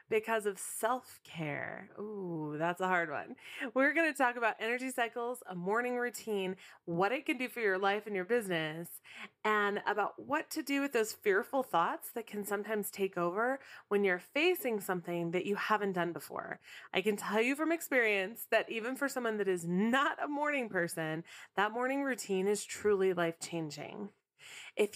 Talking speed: 180 wpm